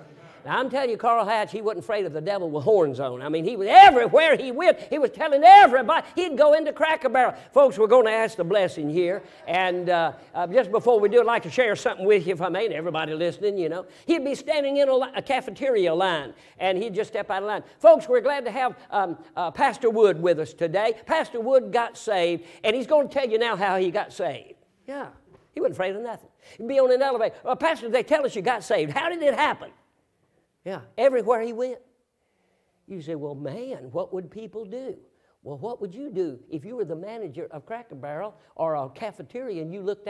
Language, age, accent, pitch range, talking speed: English, 50-69, American, 195-280 Hz, 235 wpm